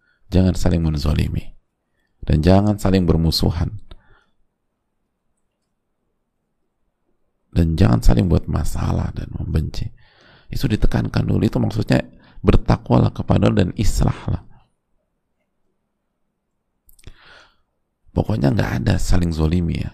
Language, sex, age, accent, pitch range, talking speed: Indonesian, male, 40-59, native, 80-105 Hz, 95 wpm